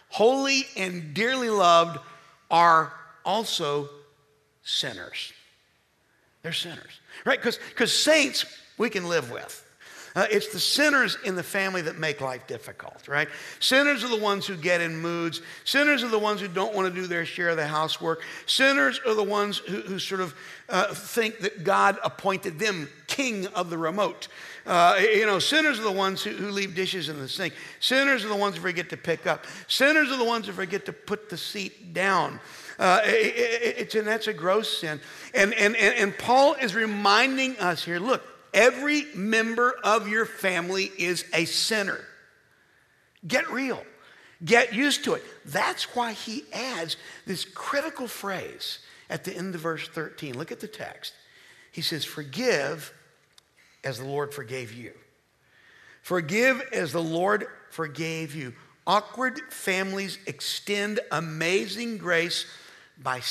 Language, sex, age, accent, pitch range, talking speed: English, male, 50-69, American, 165-225 Hz, 165 wpm